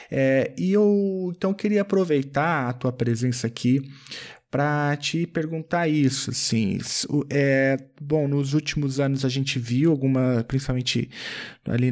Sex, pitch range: male, 120-135 Hz